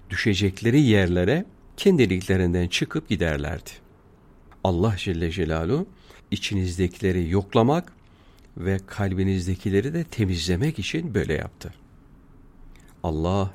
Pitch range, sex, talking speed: 90-120 Hz, male, 80 wpm